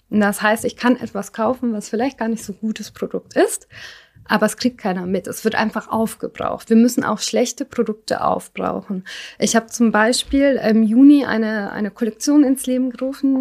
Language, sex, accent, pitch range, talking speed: German, female, German, 215-245 Hz, 185 wpm